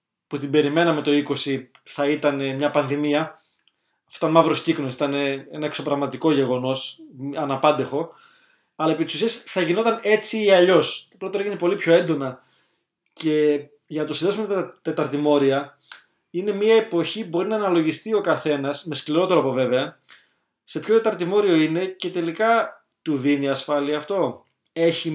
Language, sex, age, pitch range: Greek, male, 20-39, 145-190 Hz